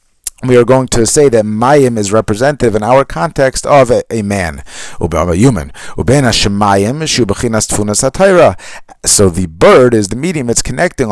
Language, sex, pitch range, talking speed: English, male, 95-130 Hz, 140 wpm